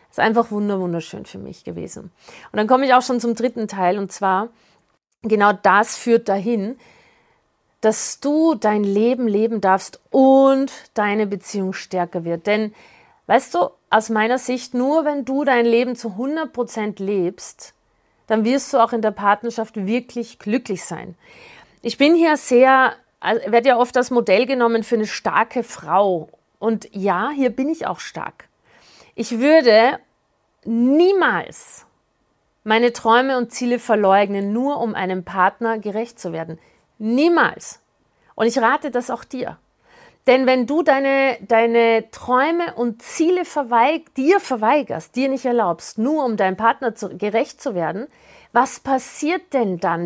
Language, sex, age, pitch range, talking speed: German, female, 40-59, 210-260 Hz, 150 wpm